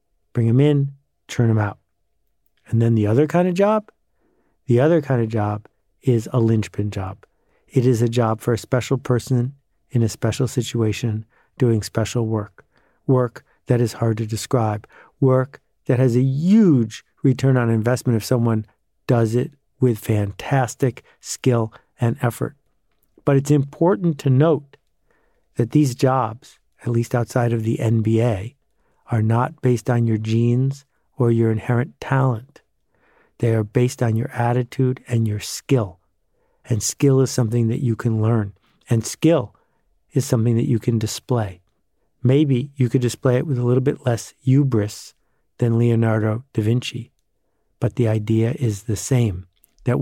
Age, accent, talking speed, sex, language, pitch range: 50-69, American, 155 wpm, male, English, 115-135 Hz